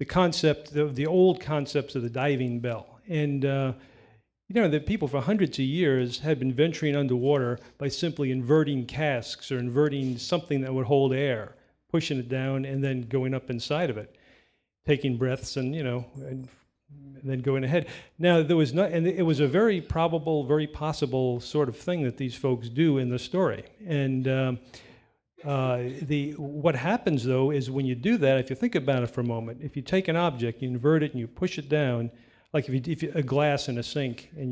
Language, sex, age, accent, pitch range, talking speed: English, male, 40-59, American, 130-150 Hz, 210 wpm